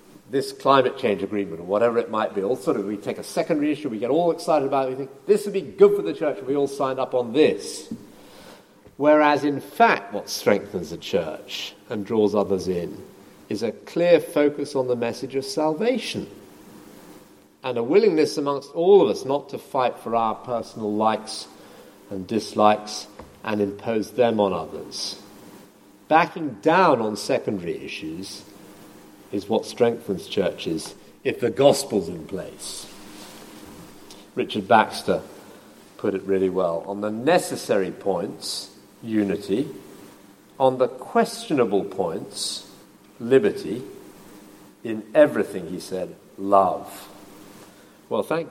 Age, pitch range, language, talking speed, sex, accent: 50-69, 100-140 Hz, English, 145 wpm, male, British